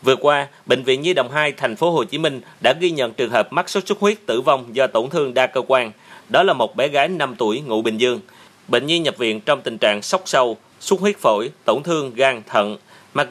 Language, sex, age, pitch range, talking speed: Vietnamese, male, 30-49, 125-190 Hz, 255 wpm